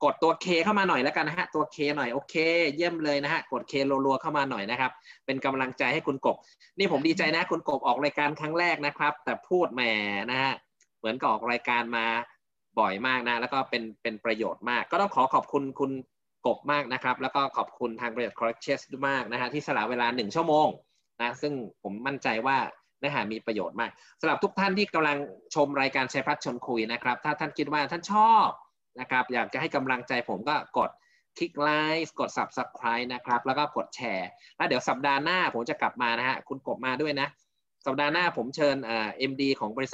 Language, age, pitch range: Thai, 20-39, 120-150 Hz